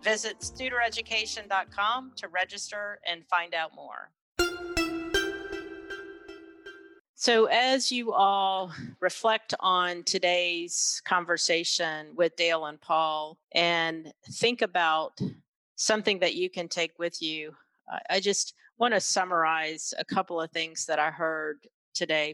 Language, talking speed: English, 115 wpm